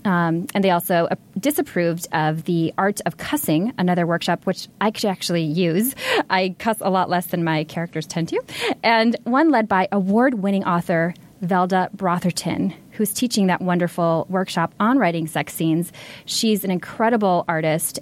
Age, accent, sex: 20-39, American, female